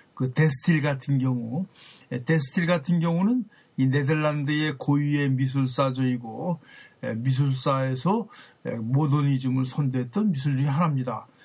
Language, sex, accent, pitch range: Korean, male, native, 130-175 Hz